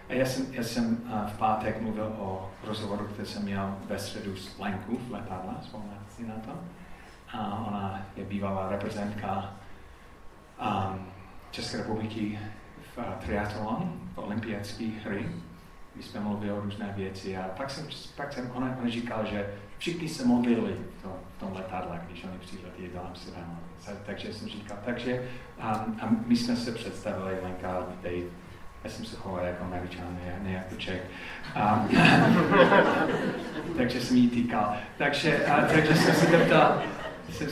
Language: Czech